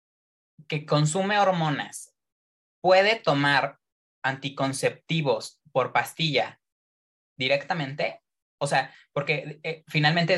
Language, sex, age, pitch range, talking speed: English, male, 20-39, 130-160 Hz, 80 wpm